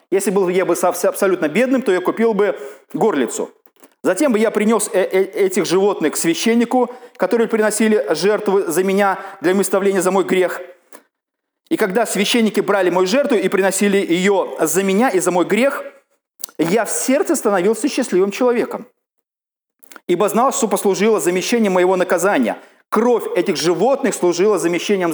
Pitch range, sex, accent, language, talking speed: 195-245 Hz, male, native, Russian, 150 wpm